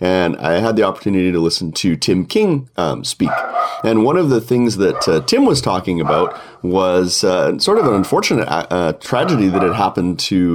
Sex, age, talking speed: male, 30-49, 200 wpm